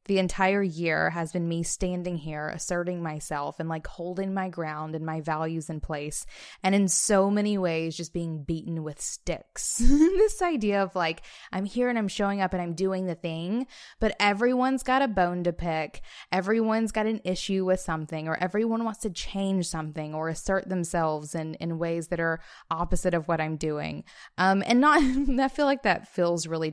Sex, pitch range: female, 165-215 Hz